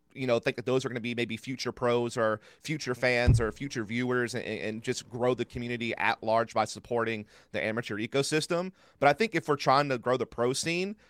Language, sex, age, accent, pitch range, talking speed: English, male, 30-49, American, 115-135 Hz, 225 wpm